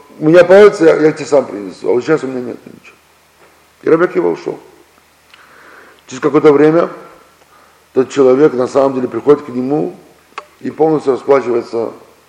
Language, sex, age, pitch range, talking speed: Russian, male, 50-69, 115-155 Hz, 155 wpm